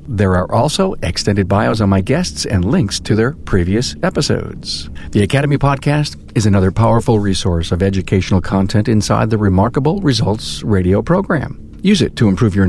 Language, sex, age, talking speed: English, male, 50-69, 165 wpm